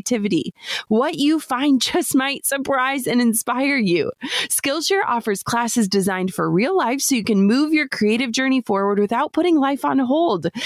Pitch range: 210-275 Hz